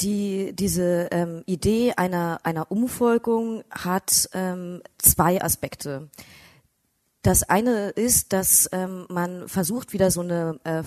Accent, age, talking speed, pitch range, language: German, 20-39, 120 wpm, 170-205 Hz, German